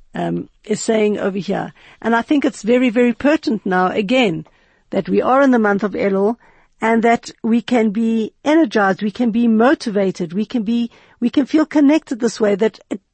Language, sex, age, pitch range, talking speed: English, female, 60-79, 200-255 Hz, 195 wpm